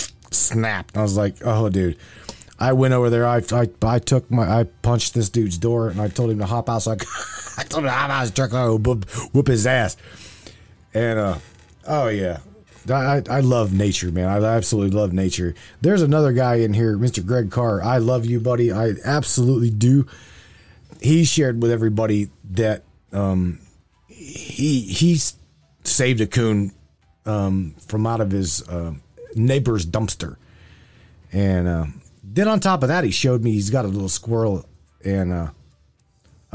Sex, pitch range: male, 100-125 Hz